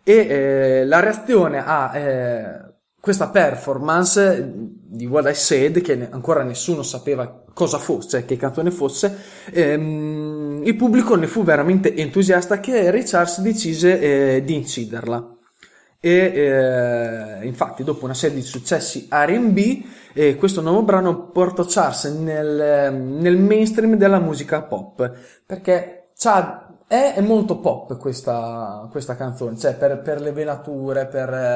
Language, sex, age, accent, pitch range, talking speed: Italian, male, 20-39, native, 130-175 Hz, 135 wpm